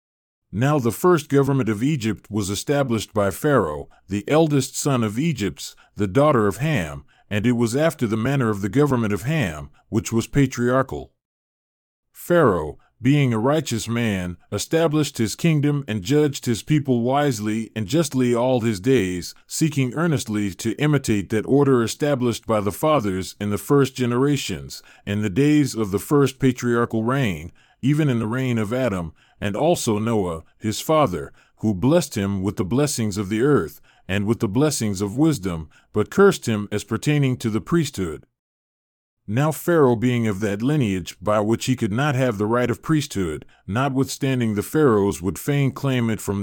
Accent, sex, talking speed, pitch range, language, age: American, male, 170 wpm, 105-140 Hz, English, 40-59